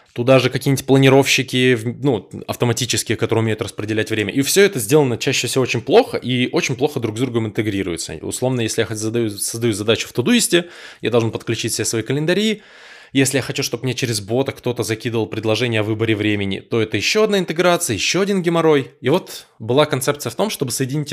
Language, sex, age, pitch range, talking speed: Russian, male, 20-39, 110-140 Hz, 195 wpm